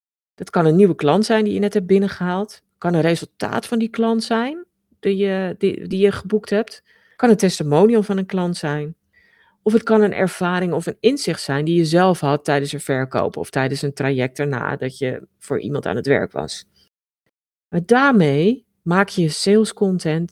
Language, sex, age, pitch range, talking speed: Dutch, female, 40-59, 150-200 Hz, 205 wpm